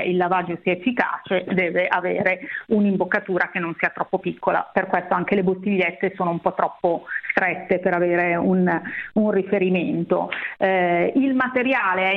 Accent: native